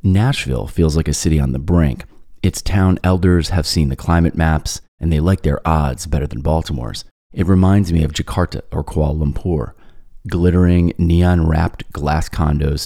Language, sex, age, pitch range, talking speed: English, male, 30-49, 75-90 Hz, 170 wpm